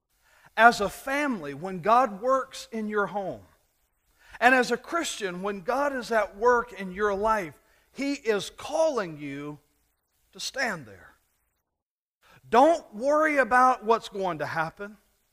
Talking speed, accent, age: 135 wpm, American, 40-59